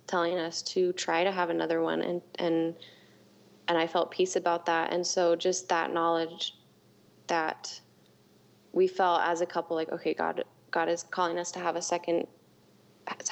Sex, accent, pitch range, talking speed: female, American, 160-180 Hz, 175 wpm